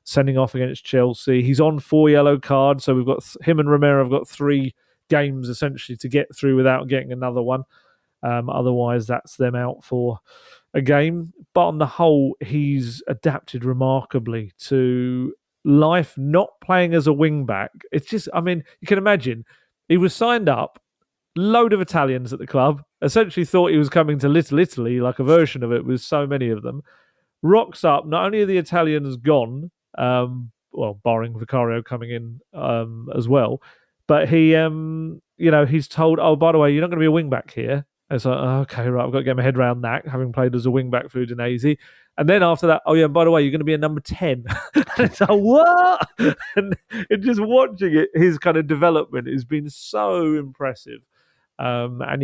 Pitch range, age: 125-160 Hz, 40-59